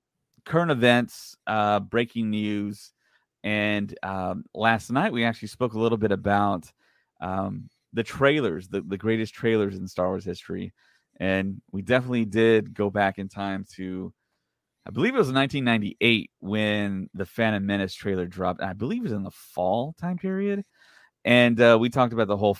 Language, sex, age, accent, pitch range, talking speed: English, male, 30-49, American, 95-115 Hz, 165 wpm